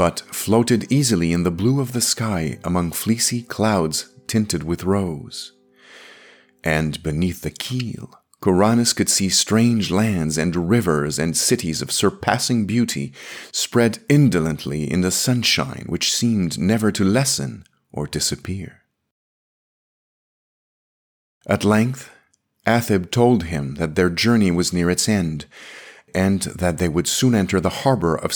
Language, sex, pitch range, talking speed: English, male, 85-120 Hz, 135 wpm